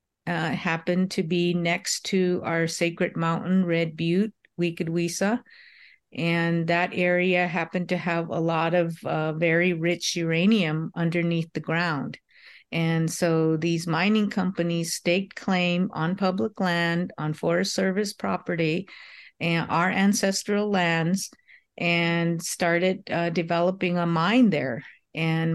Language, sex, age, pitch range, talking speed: English, female, 50-69, 165-185 Hz, 125 wpm